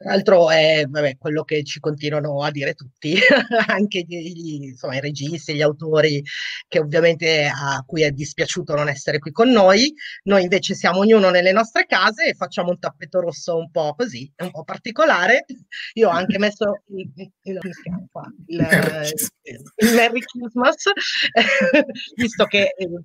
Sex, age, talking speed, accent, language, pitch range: female, 30-49, 155 wpm, native, Italian, 160-220 Hz